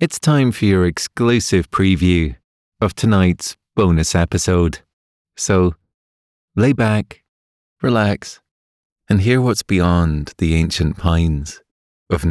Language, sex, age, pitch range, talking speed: English, male, 30-49, 75-95 Hz, 105 wpm